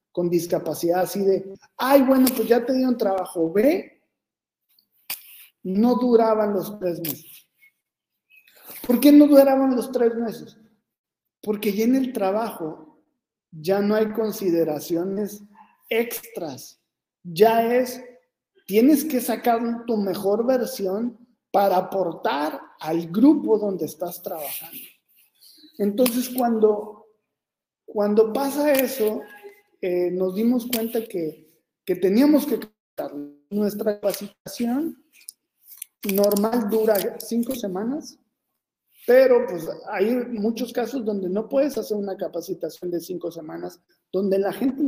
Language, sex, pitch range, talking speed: Spanish, male, 190-245 Hz, 115 wpm